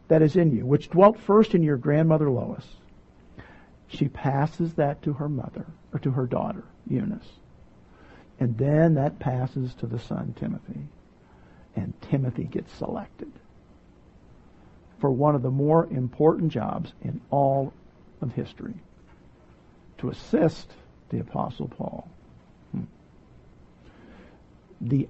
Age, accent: 60-79, American